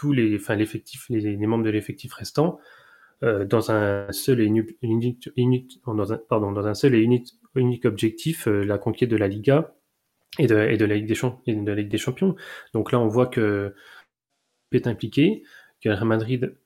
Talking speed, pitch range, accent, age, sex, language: 165 wpm, 110-130 Hz, French, 20-39, male, French